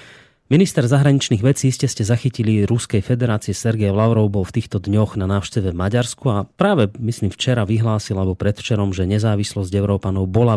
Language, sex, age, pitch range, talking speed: Slovak, male, 30-49, 100-120 Hz, 165 wpm